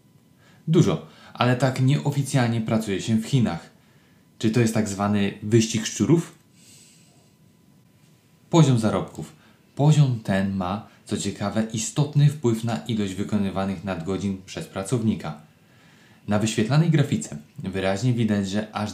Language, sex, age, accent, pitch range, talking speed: Polish, male, 20-39, native, 100-125 Hz, 115 wpm